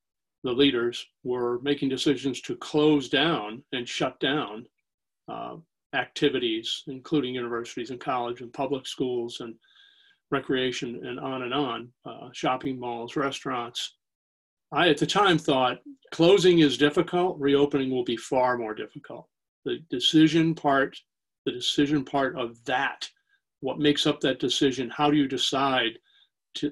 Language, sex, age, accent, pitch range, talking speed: English, male, 40-59, American, 125-160 Hz, 140 wpm